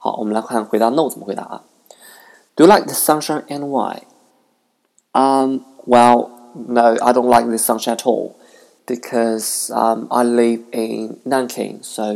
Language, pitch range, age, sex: Chinese, 110-130 Hz, 20-39, male